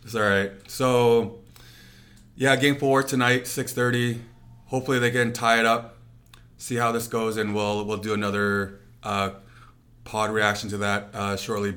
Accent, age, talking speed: American, 30-49, 160 wpm